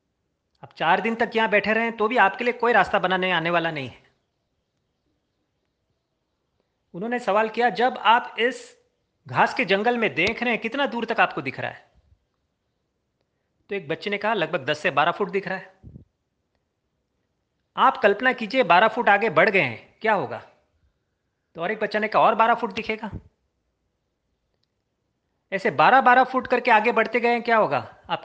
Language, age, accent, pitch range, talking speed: Hindi, 30-49, native, 185-230 Hz, 175 wpm